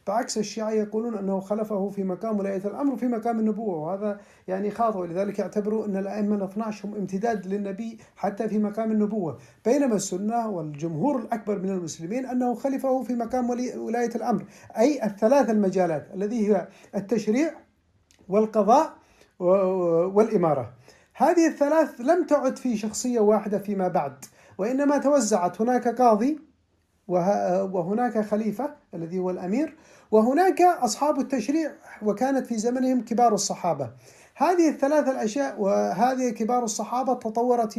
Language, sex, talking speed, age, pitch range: Arabic, male, 125 wpm, 50-69, 205-255 Hz